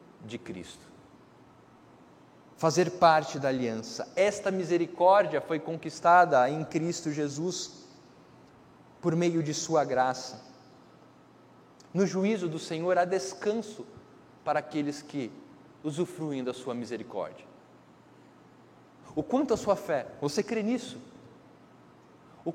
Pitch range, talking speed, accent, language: 135-185 Hz, 105 wpm, Brazilian, Portuguese